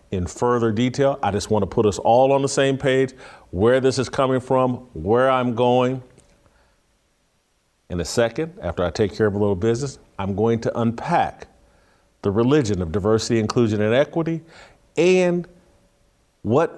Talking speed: 165 wpm